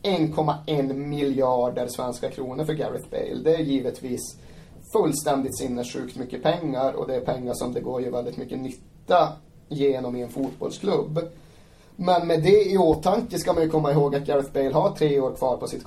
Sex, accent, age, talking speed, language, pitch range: male, native, 30-49, 180 wpm, Swedish, 135-160 Hz